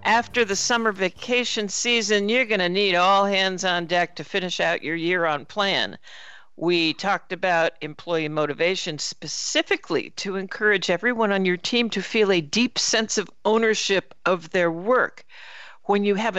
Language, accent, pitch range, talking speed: English, American, 160-210 Hz, 160 wpm